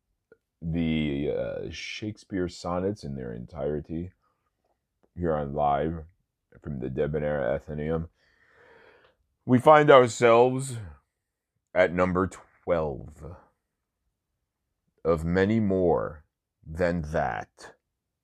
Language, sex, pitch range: English, male, 75-95 Hz